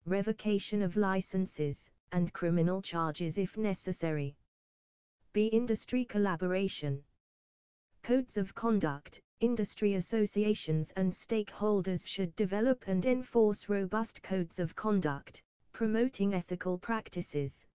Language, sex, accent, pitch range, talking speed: English, female, British, 170-215 Hz, 100 wpm